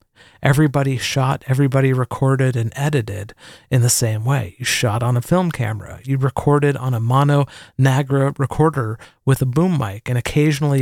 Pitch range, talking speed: 120-150 Hz, 160 wpm